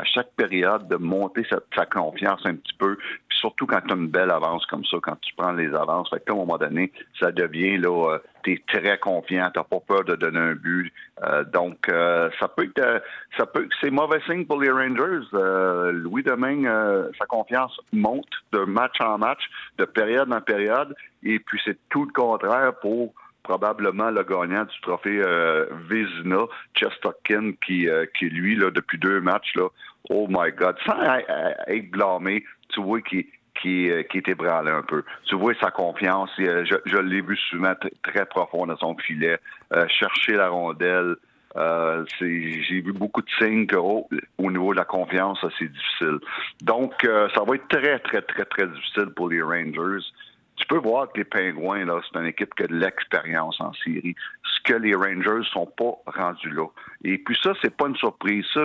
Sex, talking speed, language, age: male, 200 wpm, French, 60-79